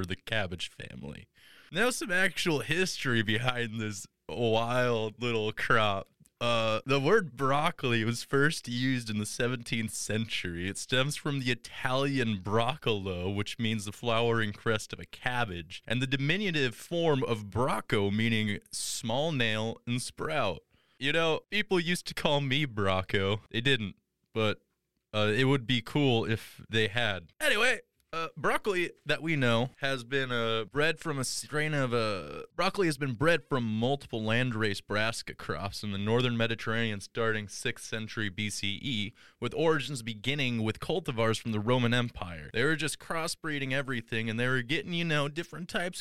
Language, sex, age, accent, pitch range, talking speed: English, male, 20-39, American, 110-145 Hz, 160 wpm